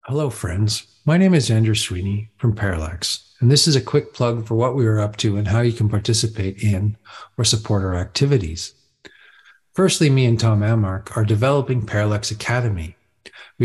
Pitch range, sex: 105-125 Hz, male